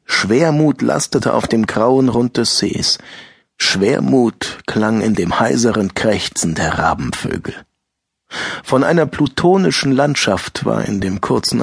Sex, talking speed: male, 125 wpm